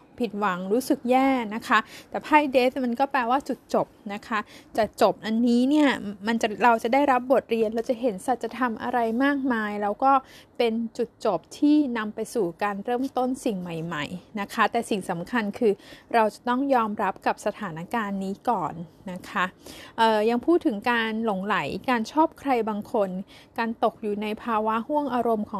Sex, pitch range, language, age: female, 205-250 Hz, Thai, 20-39